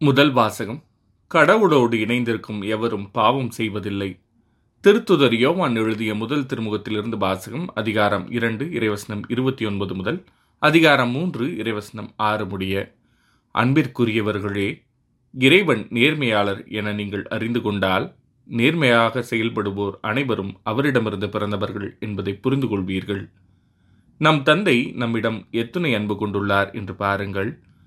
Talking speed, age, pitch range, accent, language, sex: 100 wpm, 20-39, 100-120 Hz, native, Tamil, male